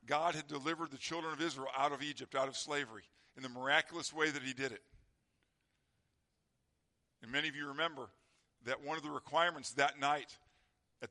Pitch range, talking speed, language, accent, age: 130-155 Hz, 185 wpm, English, American, 50-69